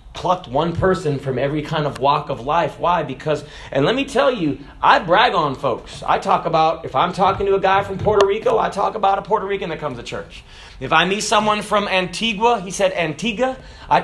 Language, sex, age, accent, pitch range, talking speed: English, male, 30-49, American, 180-255 Hz, 225 wpm